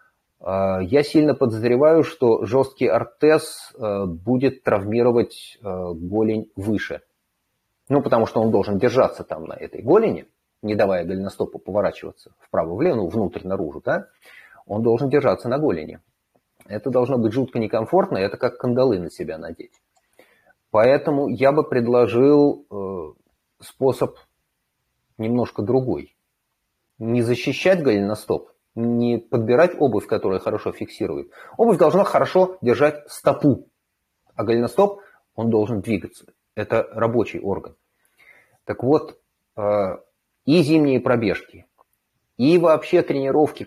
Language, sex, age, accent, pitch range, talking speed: Russian, male, 30-49, native, 110-140 Hz, 110 wpm